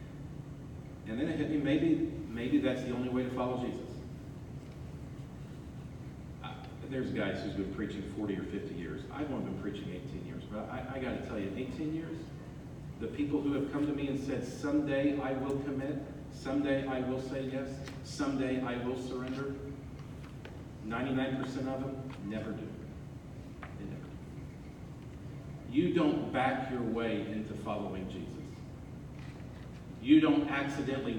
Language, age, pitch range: English, 40-59, 115-140 Hz